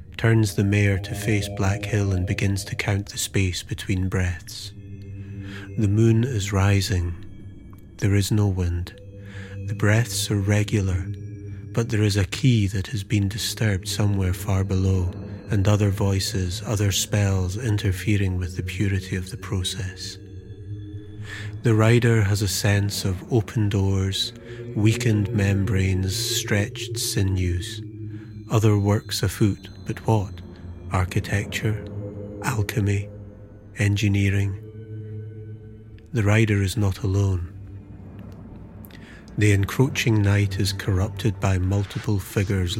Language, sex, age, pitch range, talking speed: English, male, 30-49, 95-110 Hz, 120 wpm